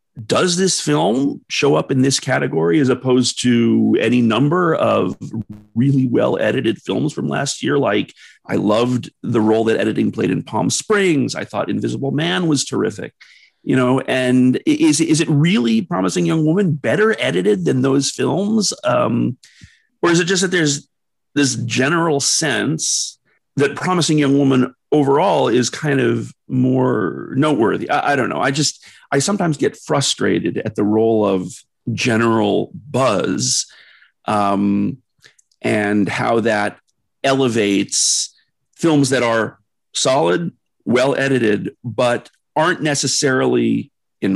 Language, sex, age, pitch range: English, male, 40-59, 115-150 Hz